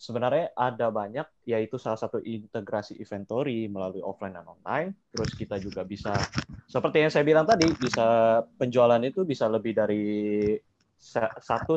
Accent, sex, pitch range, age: native, male, 110-130 Hz, 20-39